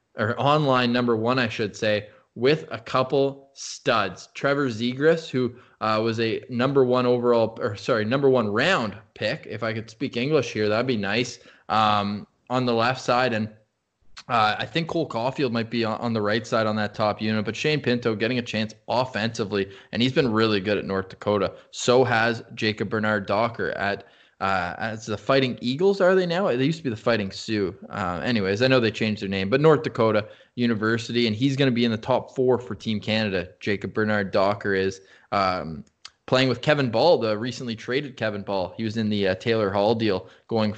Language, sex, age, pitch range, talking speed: English, male, 20-39, 105-130 Hz, 205 wpm